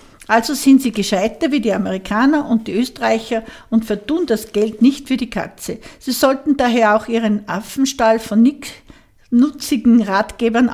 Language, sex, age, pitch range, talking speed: German, female, 50-69, 210-255 Hz, 155 wpm